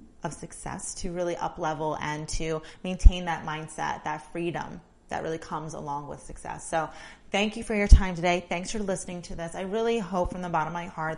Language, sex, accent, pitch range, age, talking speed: English, female, American, 165-195 Hz, 30-49, 210 wpm